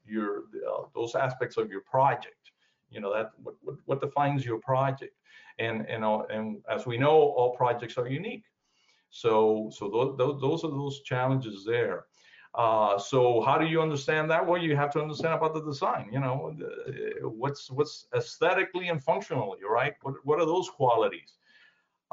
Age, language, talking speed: 50-69, English, 175 wpm